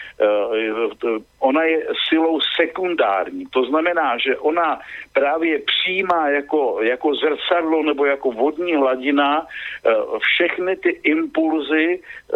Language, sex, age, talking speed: Slovak, male, 50-69, 95 wpm